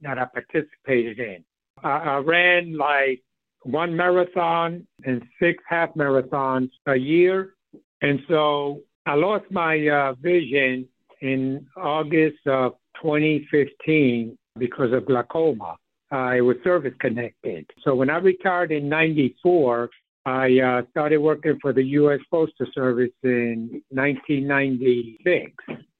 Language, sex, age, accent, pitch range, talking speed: English, male, 60-79, American, 130-160 Hz, 120 wpm